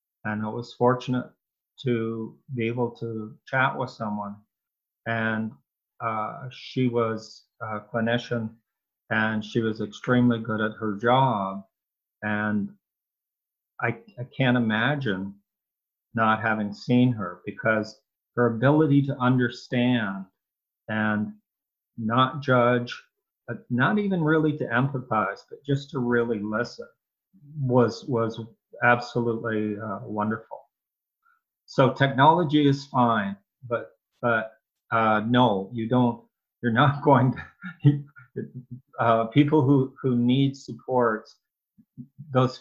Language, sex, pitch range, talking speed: English, male, 110-130 Hz, 110 wpm